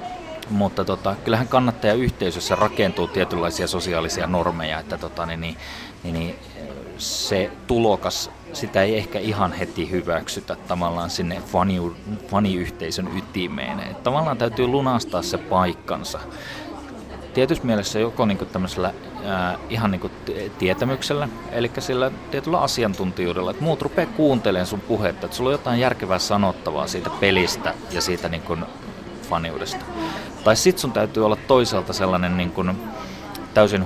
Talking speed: 130 wpm